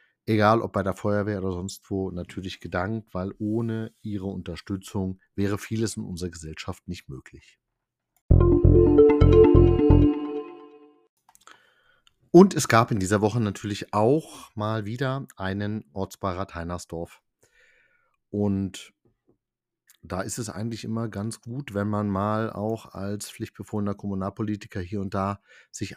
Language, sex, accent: German, male, German